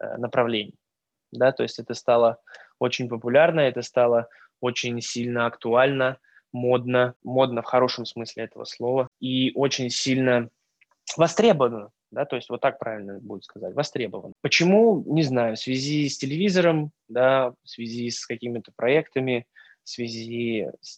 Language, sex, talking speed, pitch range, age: Russian, male, 140 wpm, 115-130 Hz, 20-39